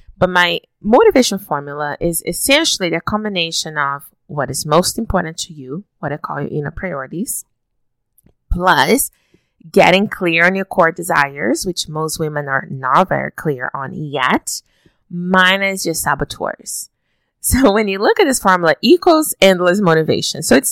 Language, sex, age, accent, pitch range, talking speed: English, female, 20-39, American, 155-205 Hz, 150 wpm